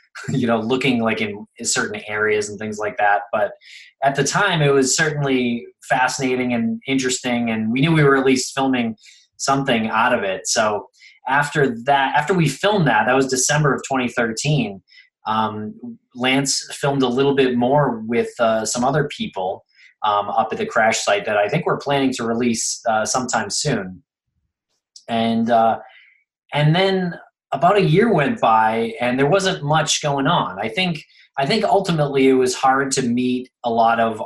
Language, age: English, 20-39